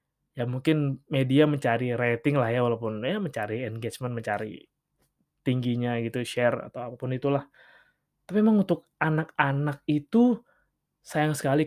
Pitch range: 125-160 Hz